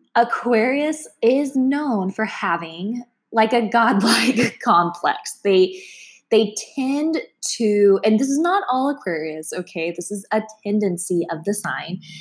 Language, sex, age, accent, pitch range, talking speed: English, female, 20-39, American, 190-265 Hz, 135 wpm